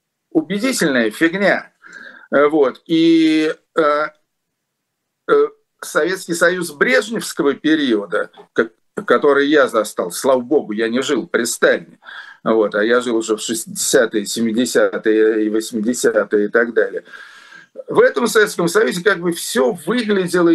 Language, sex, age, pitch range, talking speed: Russian, male, 50-69, 145-240 Hz, 115 wpm